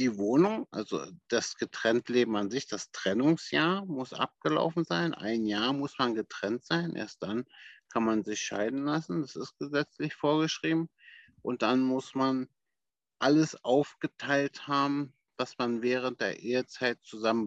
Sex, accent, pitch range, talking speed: male, German, 120-140 Hz, 150 wpm